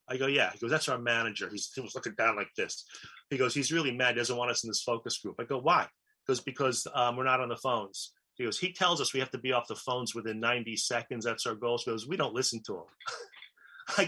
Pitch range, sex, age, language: 125-170 Hz, male, 30-49, English